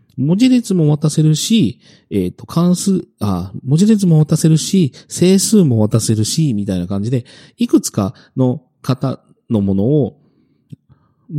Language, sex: Japanese, male